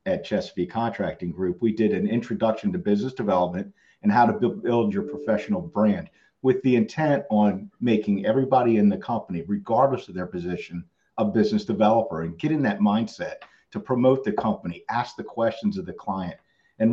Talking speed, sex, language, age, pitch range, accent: 175 wpm, male, English, 50-69, 105-145 Hz, American